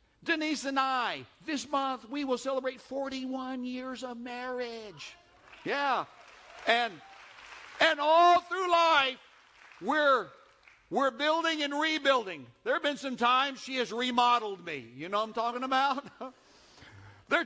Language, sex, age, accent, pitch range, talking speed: English, male, 60-79, American, 160-255 Hz, 135 wpm